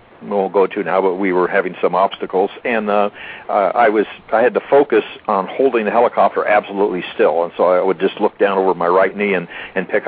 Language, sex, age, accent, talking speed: English, male, 60-79, American, 240 wpm